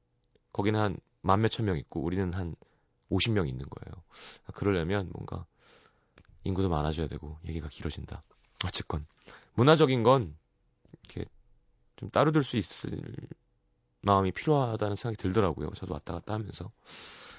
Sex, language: male, Korean